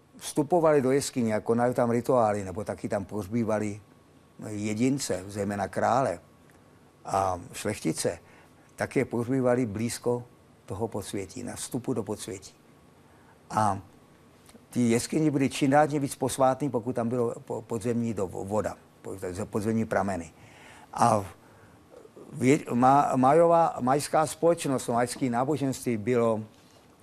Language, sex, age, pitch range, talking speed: Czech, male, 50-69, 110-135 Hz, 110 wpm